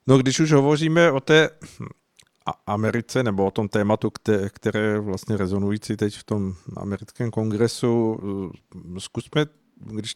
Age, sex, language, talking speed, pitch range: 50-69, male, Czech, 125 wpm, 100-115 Hz